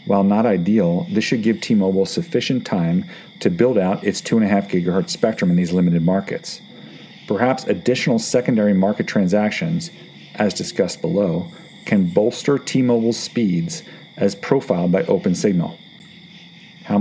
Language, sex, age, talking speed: English, male, 40-59, 135 wpm